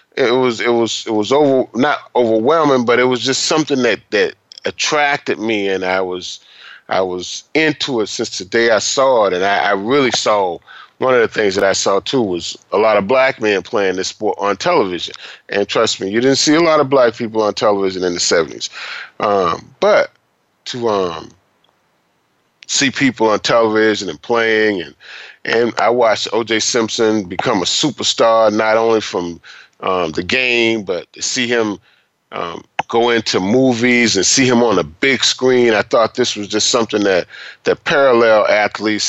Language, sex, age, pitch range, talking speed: English, male, 30-49, 100-130 Hz, 185 wpm